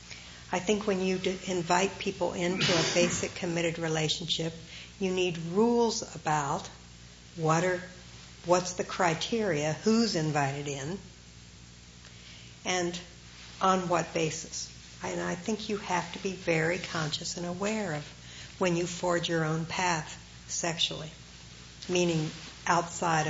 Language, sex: English, female